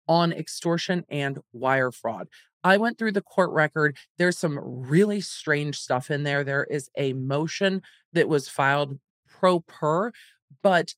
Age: 40-59